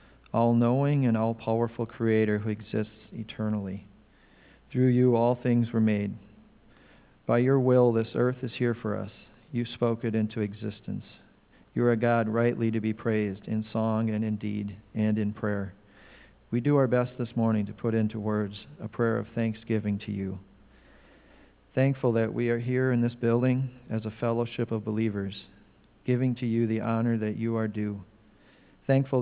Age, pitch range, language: 40-59, 105-120 Hz, English